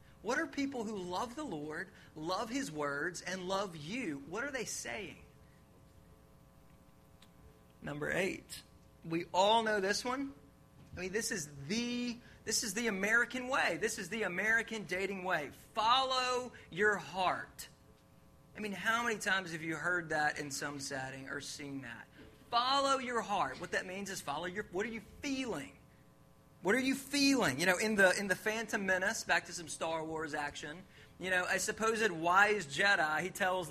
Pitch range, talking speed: 170-235 Hz, 175 wpm